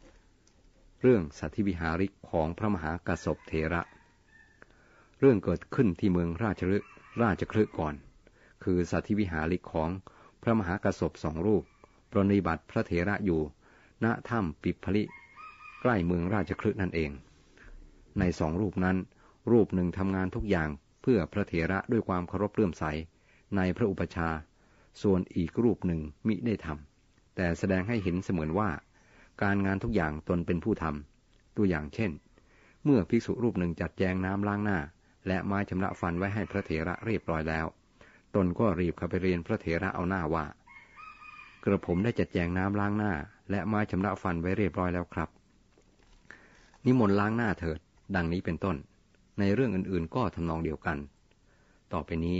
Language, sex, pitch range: Thai, male, 85-105 Hz